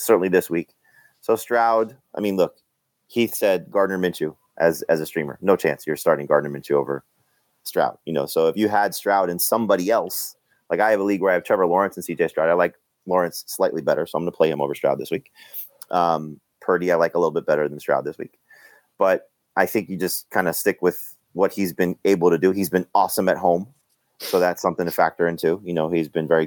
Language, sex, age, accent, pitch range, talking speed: English, male, 30-49, American, 85-105 Hz, 240 wpm